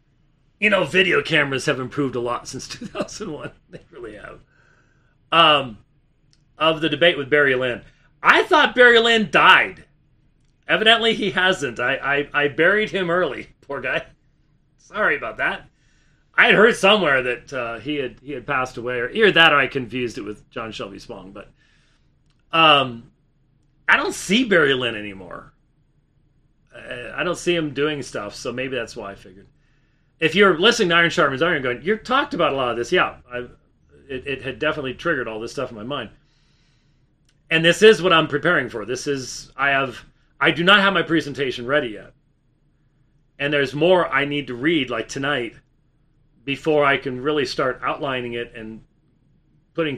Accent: American